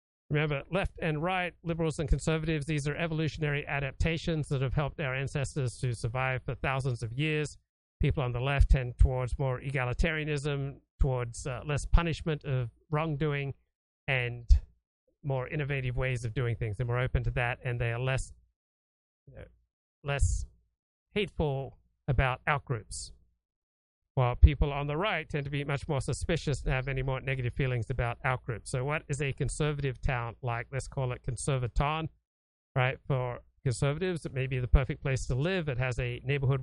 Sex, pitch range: male, 125-150 Hz